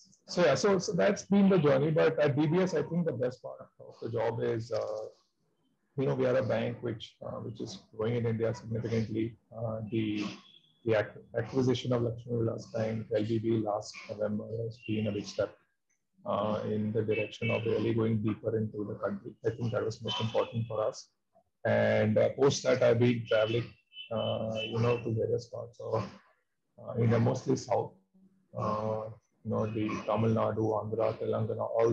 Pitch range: 110-130 Hz